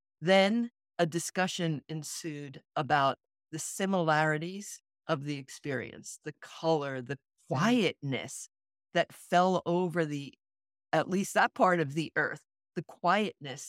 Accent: American